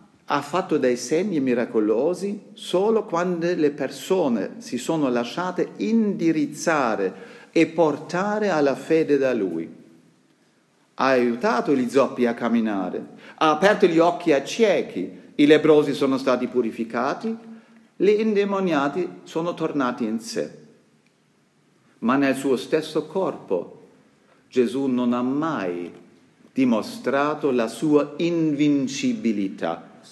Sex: male